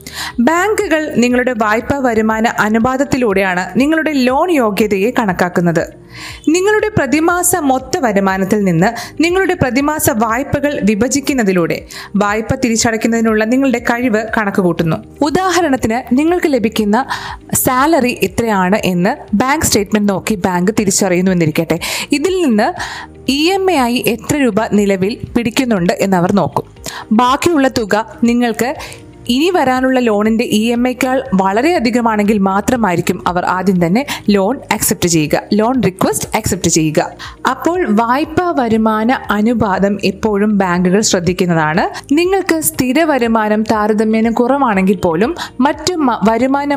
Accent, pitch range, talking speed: native, 200-270 Hz, 105 wpm